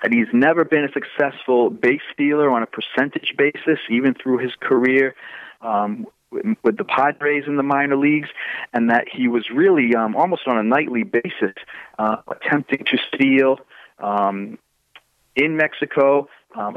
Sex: male